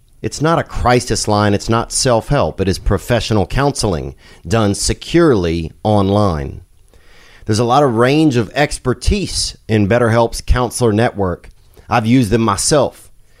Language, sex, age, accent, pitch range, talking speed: English, male, 30-49, American, 95-120 Hz, 135 wpm